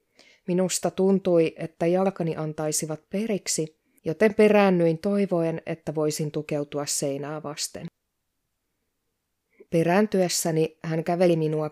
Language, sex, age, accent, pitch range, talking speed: Finnish, female, 20-39, native, 155-185 Hz, 90 wpm